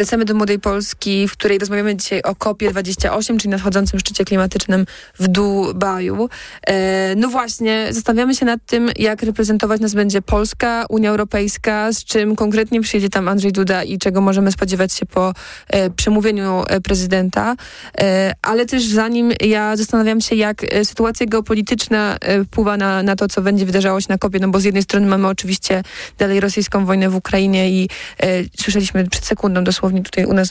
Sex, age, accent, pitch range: female, 20-39, native, 190-215 Hz